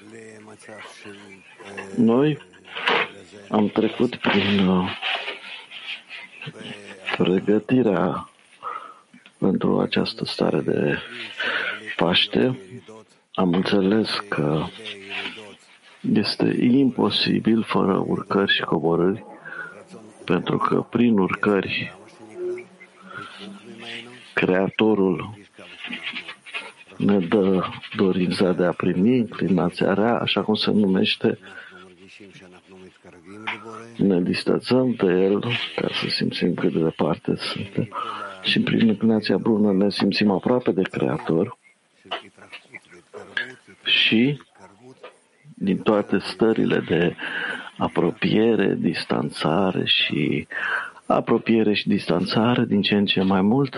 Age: 50-69